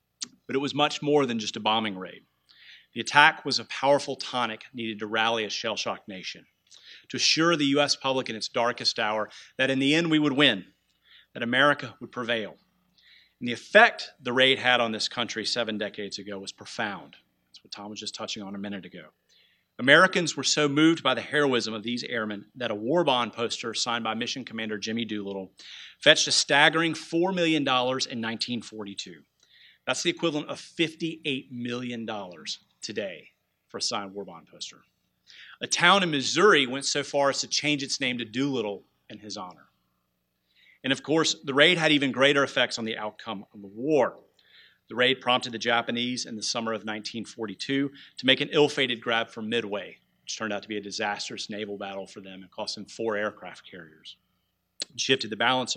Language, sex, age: English, male, 40-59